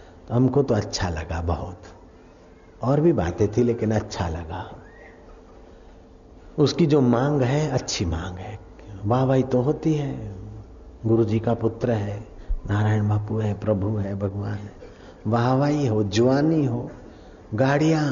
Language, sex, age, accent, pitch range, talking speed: Hindi, male, 60-79, native, 105-130 Hz, 135 wpm